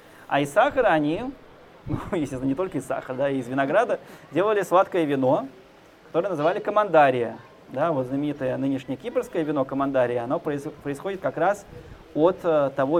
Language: Russian